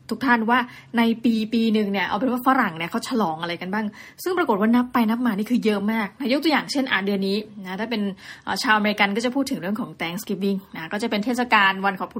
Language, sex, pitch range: Thai, female, 195-245 Hz